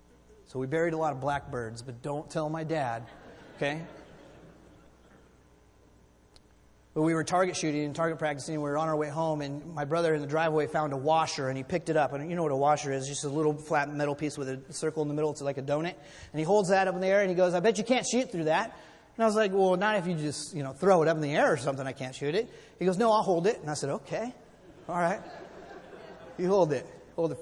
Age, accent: 30-49, American